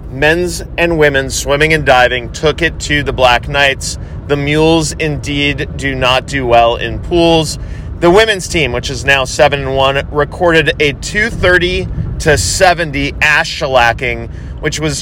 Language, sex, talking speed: English, male, 155 wpm